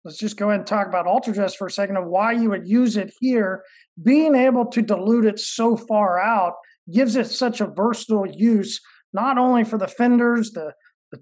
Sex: male